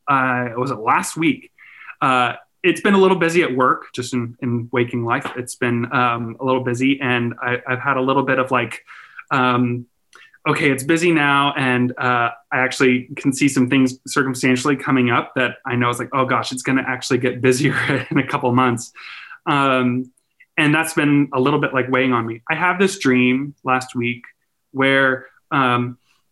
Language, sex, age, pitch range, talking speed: English, male, 20-39, 125-150 Hz, 195 wpm